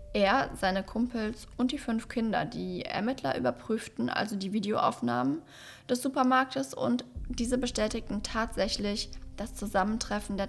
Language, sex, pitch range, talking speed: German, female, 190-230 Hz, 125 wpm